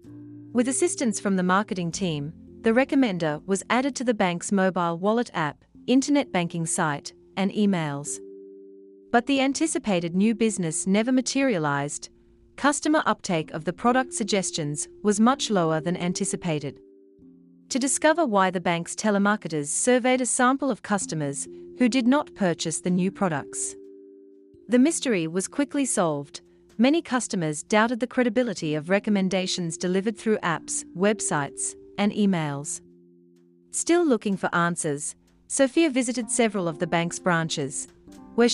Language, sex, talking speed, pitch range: English, female, 135 wpm, 155-240 Hz